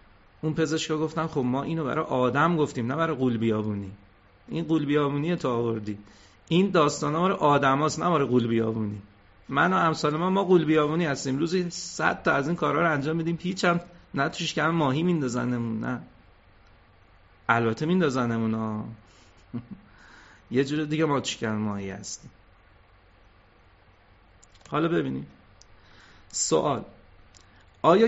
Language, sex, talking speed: Persian, male, 145 wpm